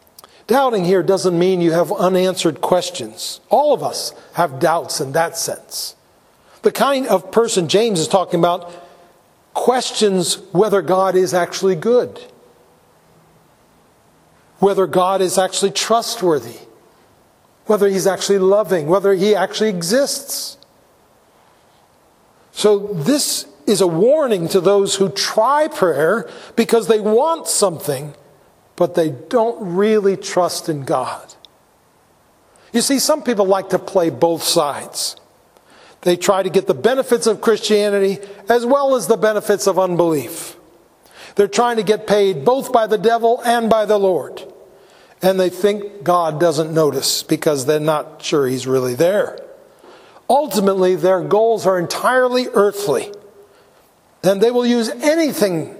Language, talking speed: English, 135 wpm